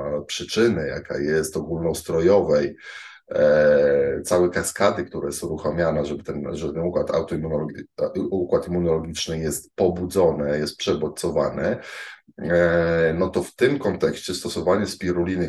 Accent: native